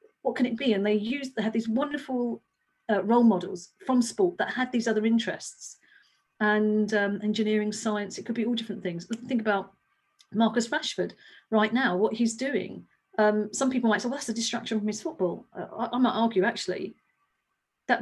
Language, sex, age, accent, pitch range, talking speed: English, female, 40-59, British, 195-245 Hz, 195 wpm